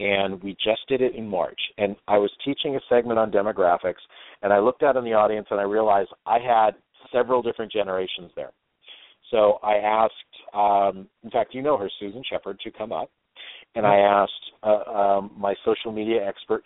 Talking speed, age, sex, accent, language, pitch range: 195 wpm, 50-69, male, American, English, 105-125 Hz